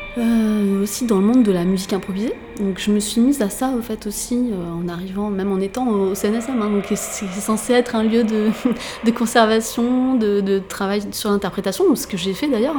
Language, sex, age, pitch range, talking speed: French, female, 30-49, 190-235 Hz, 230 wpm